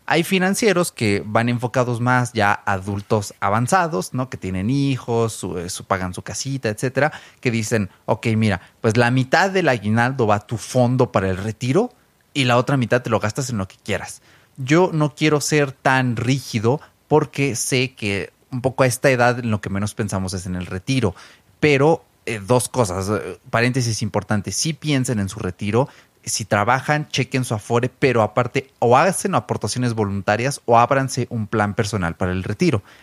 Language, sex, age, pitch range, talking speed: Spanish, male, 30-49, 105-135 Hz, 185 wpm